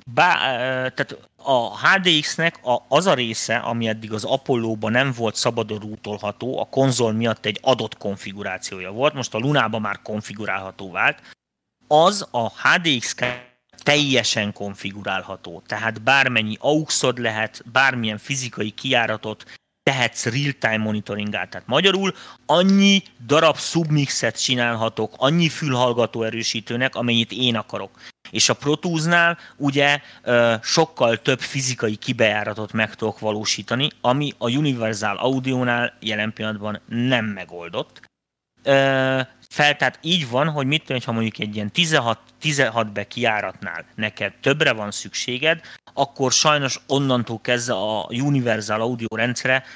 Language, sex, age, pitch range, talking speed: Hungarian, male, 30-49, 110-135 Hz, 120 wpm